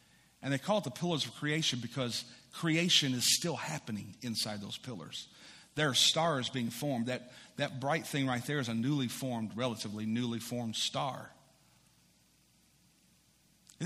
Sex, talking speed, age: male, 155 wpm, 40-59